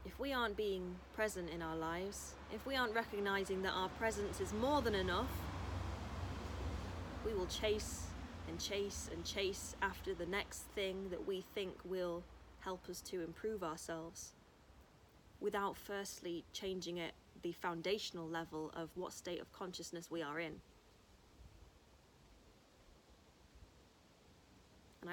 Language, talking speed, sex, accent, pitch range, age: English, 130 wpm, female, British, 150-195 Hz, 20-39